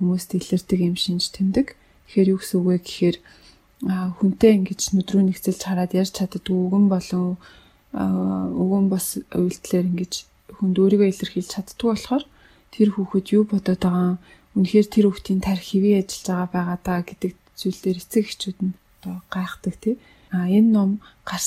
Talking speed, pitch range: 100 wpm, 180-195 Hz